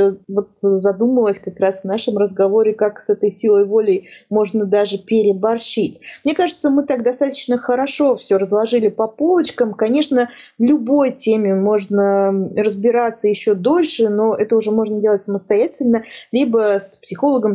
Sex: female